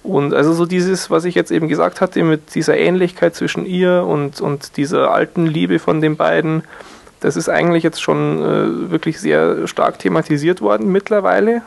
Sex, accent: male, German